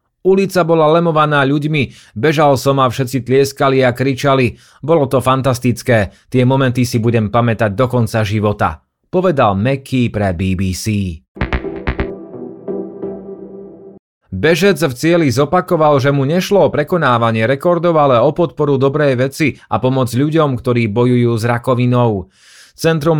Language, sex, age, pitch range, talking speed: Slovak, male, 30-49, 120-145 Hz, 125 wpm